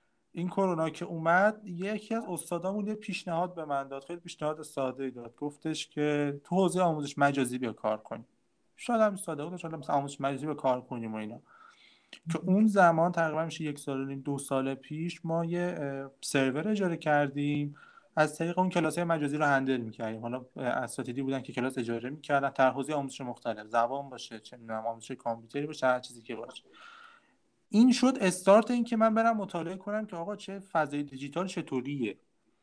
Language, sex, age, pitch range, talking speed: Persian, male, 30-49, 135-180 Hz, 165 wpm